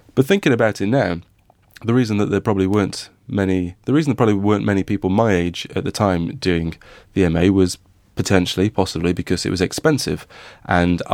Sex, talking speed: male, 190 wpm